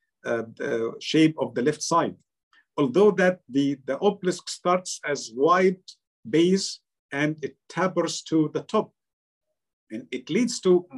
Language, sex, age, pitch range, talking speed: English, male, 50-69, 140-190 Hz, 140 wpm